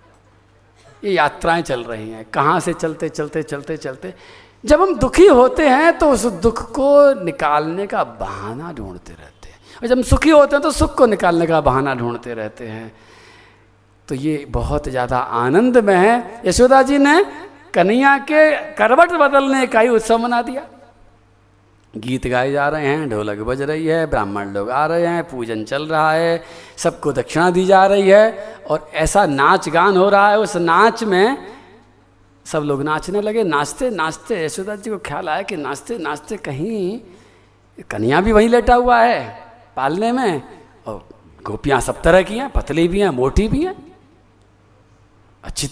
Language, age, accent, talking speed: Hindi, 50-69, native, 170 wpm